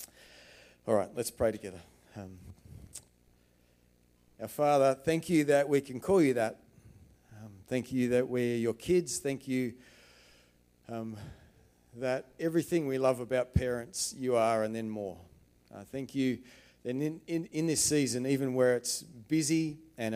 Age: 40-59